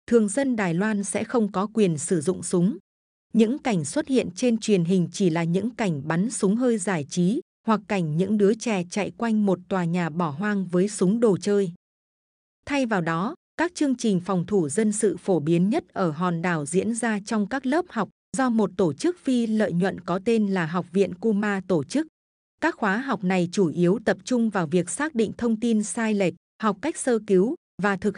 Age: 20-39